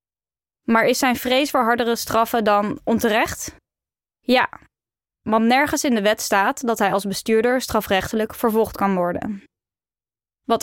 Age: 10-29